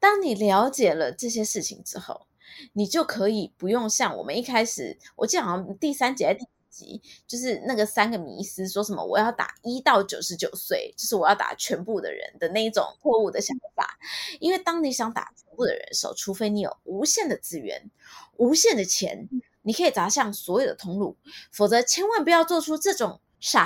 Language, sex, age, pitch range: Chinese, female, 20-39, 215-325 Hz